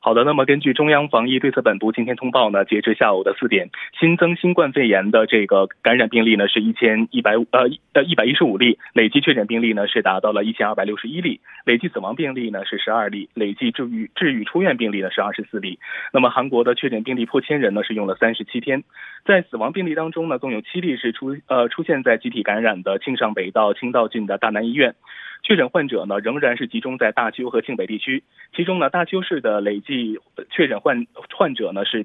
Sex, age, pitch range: male, 20-39, 110-155 Hz